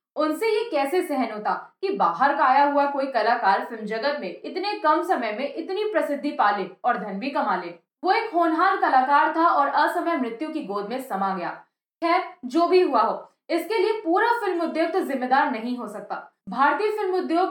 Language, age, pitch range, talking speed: Hindi, 20-39, 245-350 Hz, 120 wpm